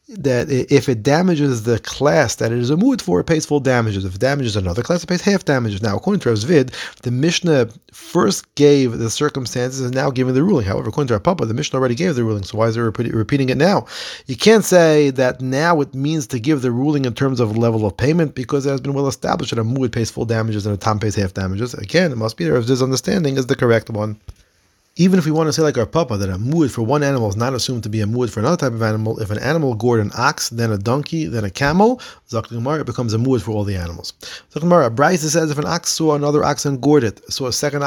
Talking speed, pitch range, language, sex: 265 wpm, 120-160 Hz, English, male